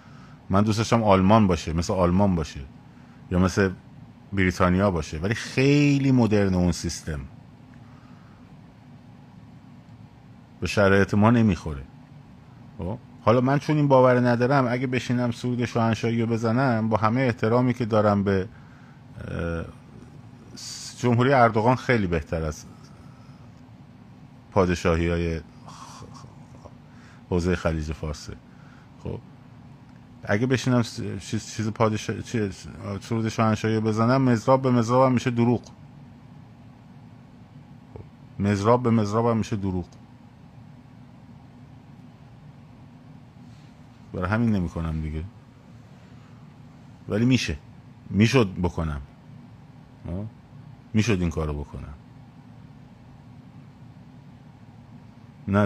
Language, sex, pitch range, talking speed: Persian, male, 100-125 Hz, 85 wpm